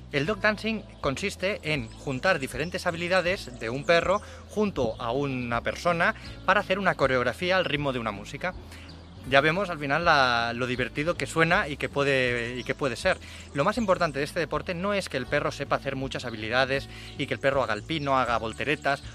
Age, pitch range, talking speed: 30-49, 120-170 Hz, 195 wpm